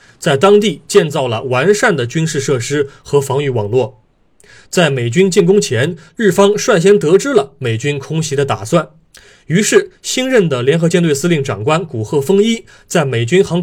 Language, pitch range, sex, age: Chinese, 130-195 Hz, male, 20-39